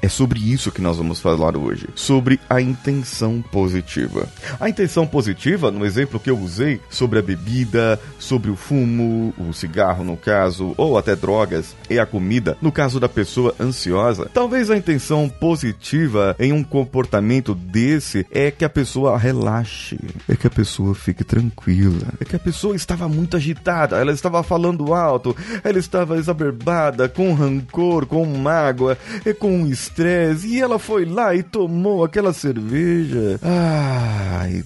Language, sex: Portuguese, male